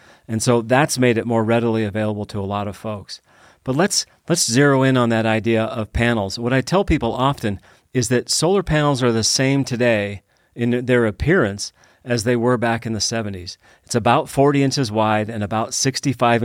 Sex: male